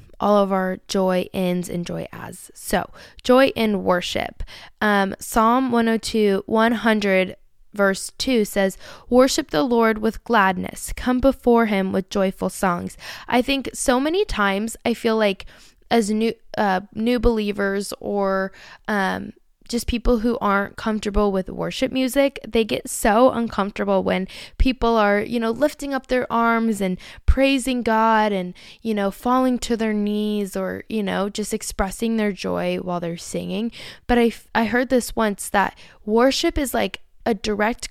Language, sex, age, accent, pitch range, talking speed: English, female, 10-29, American, 195-240 Hz, 155 wpm